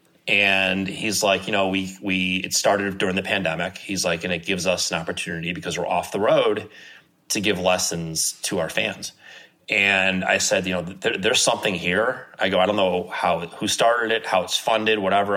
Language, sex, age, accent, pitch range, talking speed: English, male, 30-49, American, 85-100 Hz, 205 wpm